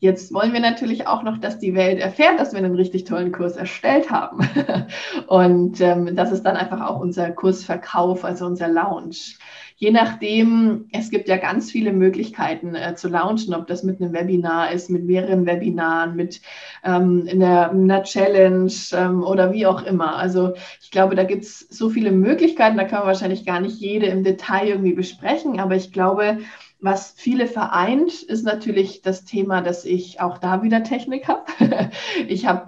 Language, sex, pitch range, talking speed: German, female, 180-215 Hz, 180 wpm